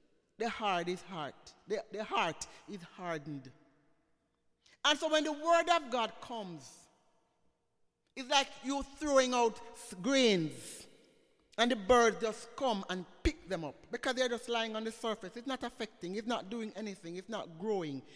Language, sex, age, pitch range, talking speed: English, male, 60-79, 200-280 Hz, 165 wpm